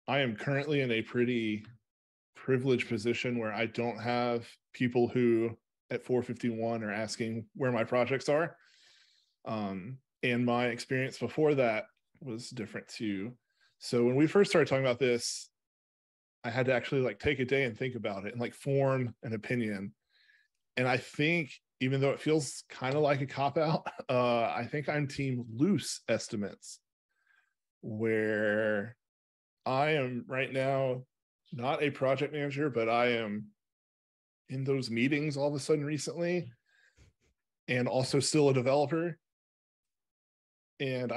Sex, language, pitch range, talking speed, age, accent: male, English, 115-140 Hz, 145 wpm, 20-39, American